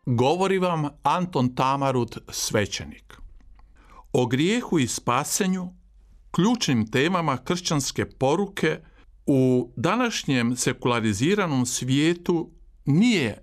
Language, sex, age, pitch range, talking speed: Croatian, male, 50-69, 115-185 Hz, 80 wpm